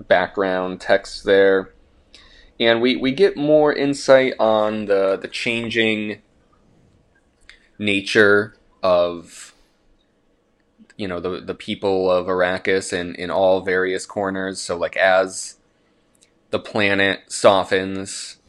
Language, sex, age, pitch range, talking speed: English, male, 20-39, 90-110 Hz, 110 wpm